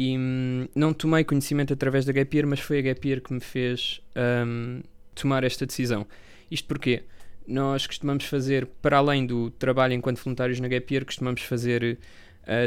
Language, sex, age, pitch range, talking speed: Portuguese, male, 20-39, 125-140 Hz, 165 wpm